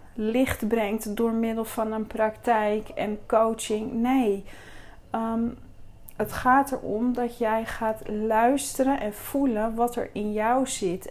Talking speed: 130 wpm